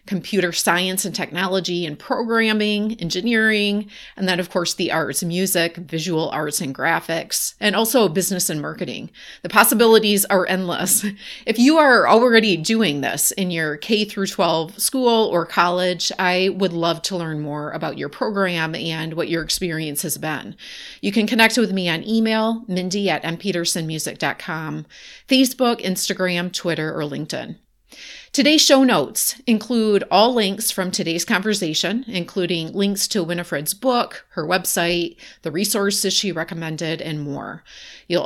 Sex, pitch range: female, 165-210 Hz